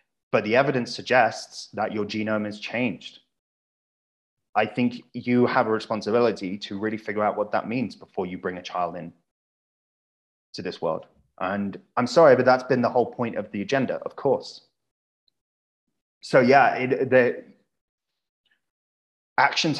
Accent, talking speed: British, 150 wpm